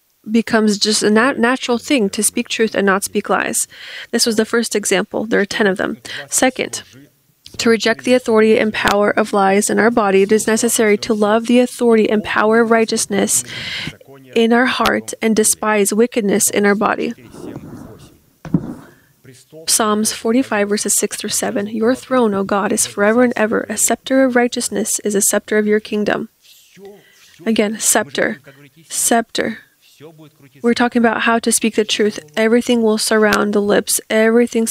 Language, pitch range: English, 200-230 Hz